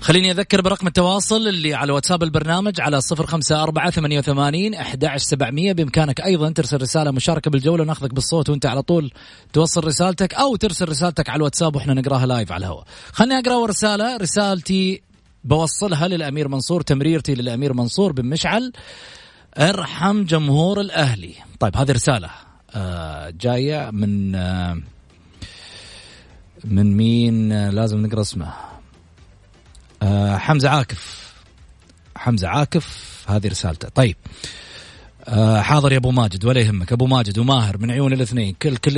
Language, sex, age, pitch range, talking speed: Arabic, male, 30-49, 105-160 Hz, 130 wpm